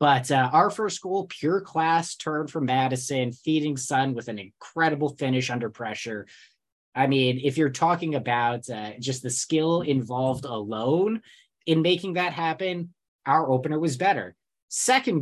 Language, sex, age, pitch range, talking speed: English, male, 20-39, 125-160 Hz, 155 wpm